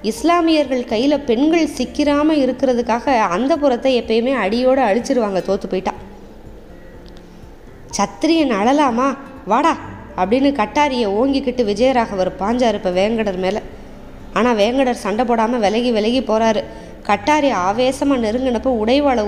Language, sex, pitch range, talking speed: Tamil, female, 215-270 Hz, 105 wpm